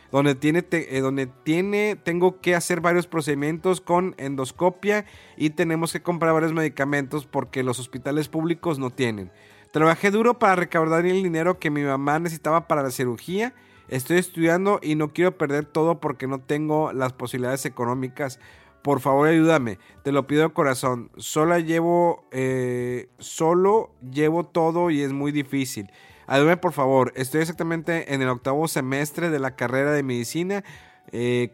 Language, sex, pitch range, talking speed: Spanish, male, 130-165 Hz, 160 wpm